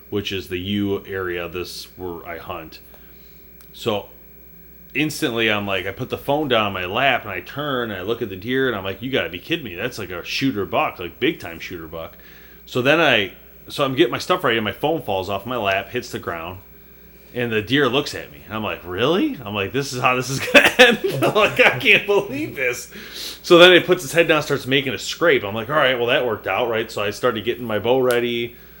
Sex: male